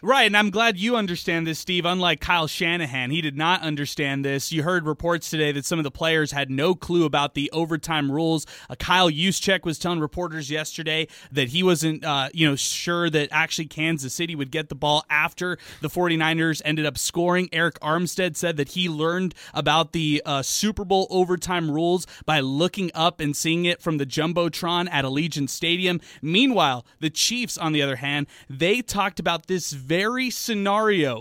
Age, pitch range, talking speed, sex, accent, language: 20-39, 155-190 Hz, 190 wpm, male, American, English